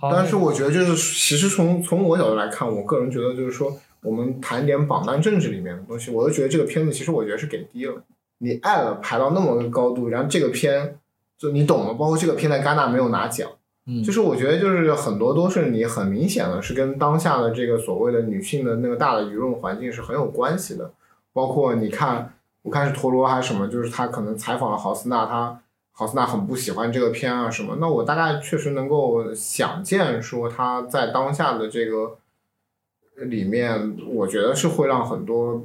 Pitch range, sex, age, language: 115-160 Hz, male, 20-39, Chinese